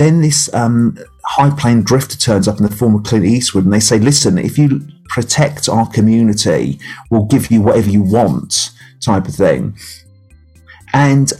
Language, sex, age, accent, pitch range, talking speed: English, male, 30-49, British, 110-145 Hz, 175 wpm